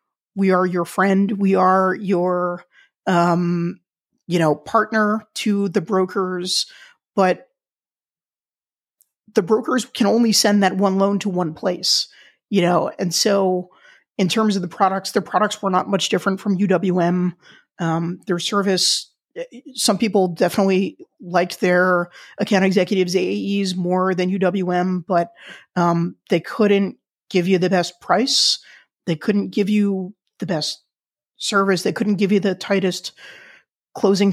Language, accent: English, American